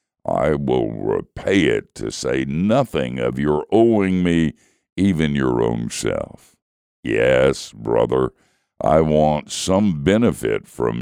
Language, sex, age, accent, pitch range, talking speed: English, male, 60-79, American, 70-95 Hz, 120 wpm